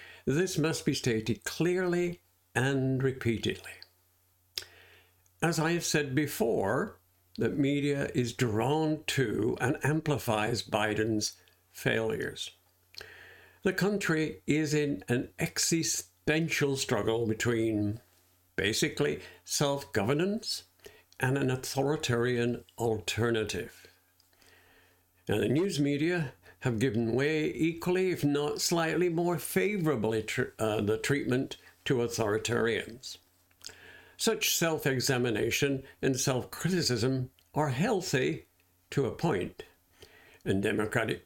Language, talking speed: English, 90 wpm